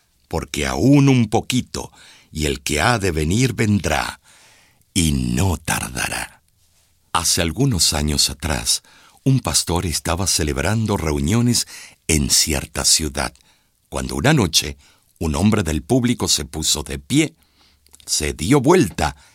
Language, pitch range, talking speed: Spanish, 80-125 Hz, 125 wpm